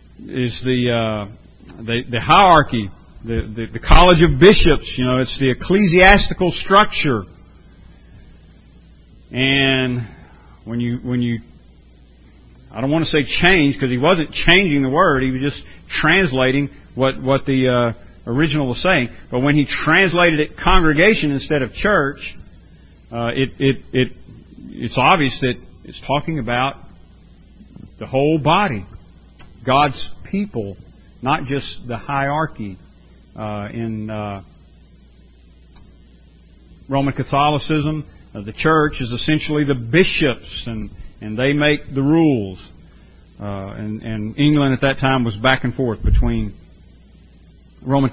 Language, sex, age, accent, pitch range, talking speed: English, male, 50-69, American, 95-145 Hz, 130 wpm